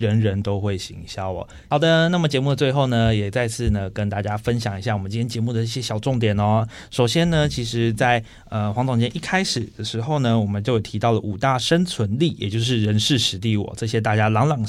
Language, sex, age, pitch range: Chinese, male, 20-39, 105-135 Hz